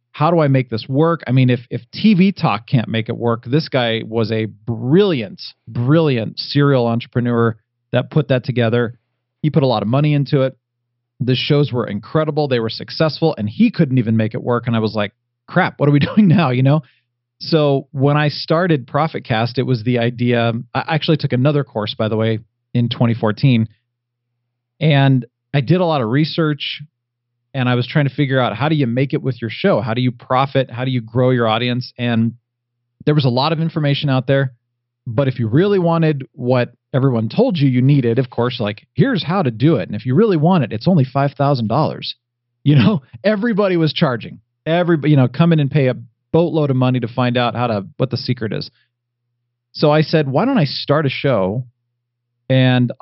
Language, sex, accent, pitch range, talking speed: English, male, American, 120-150 Hz, 210 wpm